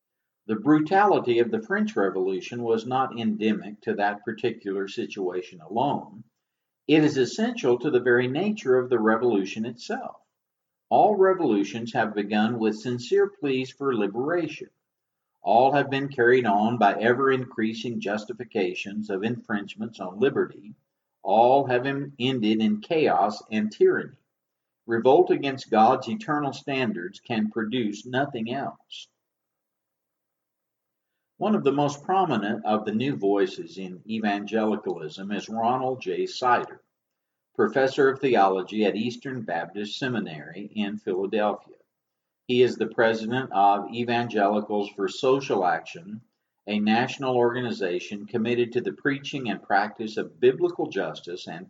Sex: male